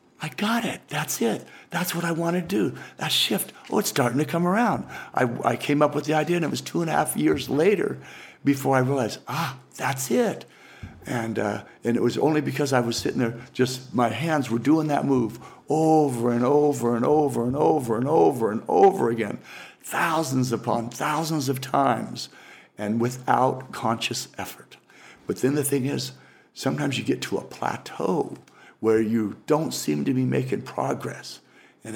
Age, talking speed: 60-79, 185 wpm